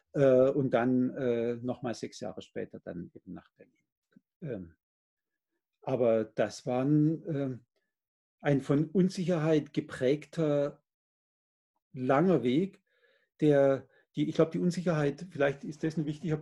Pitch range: 125-155 Hz